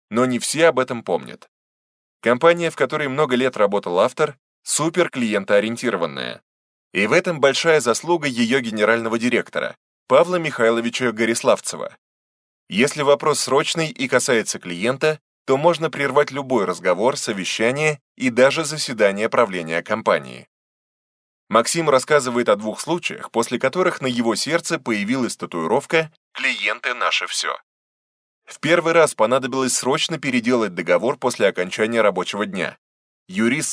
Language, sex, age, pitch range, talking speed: Russian, male, 20-39, 115-160 Hz, 125 wpm